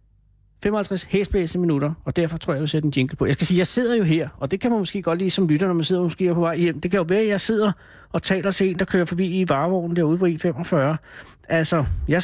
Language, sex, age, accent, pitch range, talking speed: Danish, male, 60-79, native, 145-190 Hz, 285 wpm